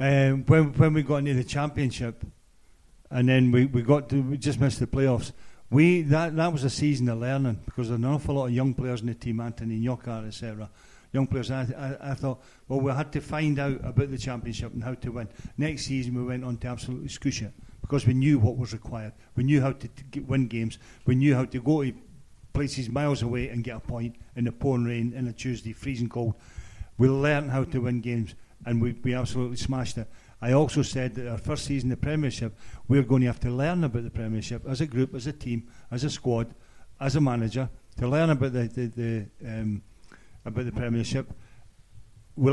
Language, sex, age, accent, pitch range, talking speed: English, male, 50-69, British, 115-135 Hz, 220 wpm